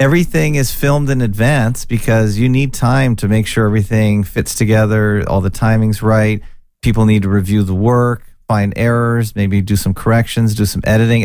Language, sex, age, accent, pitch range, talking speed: English, male, 40-59, American, 100-120 Hz, 180 wpm